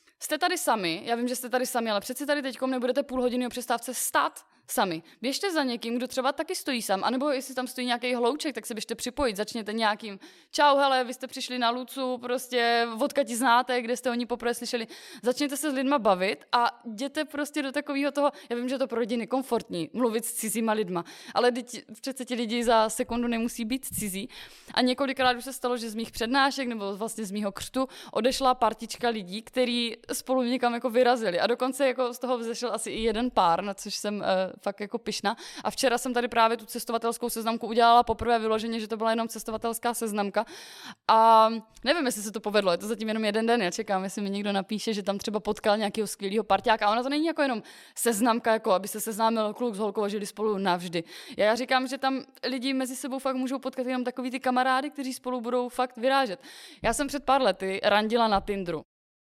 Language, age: Czech, 20-39